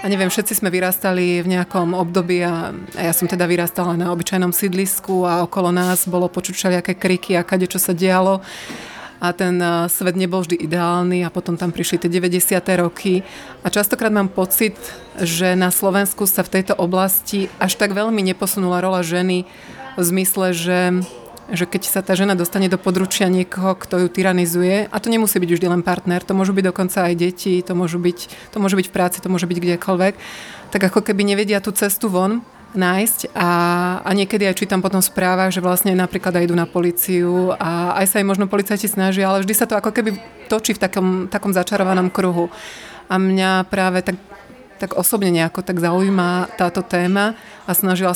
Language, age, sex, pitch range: Slovak, 30-49, female, 180-195 Hz